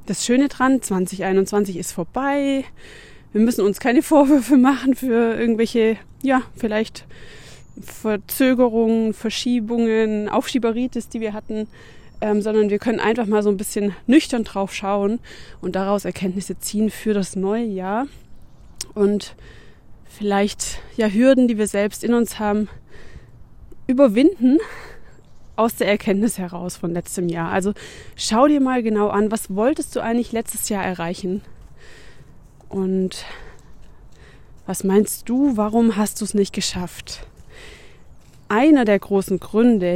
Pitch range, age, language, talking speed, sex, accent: 200-240 Hz, 20-39, German, 130 wpm, female, German